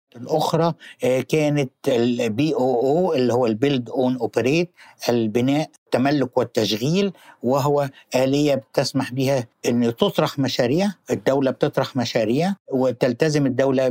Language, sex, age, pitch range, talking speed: Arabic, male, 60-79, 125-155 Hz, 95 wpm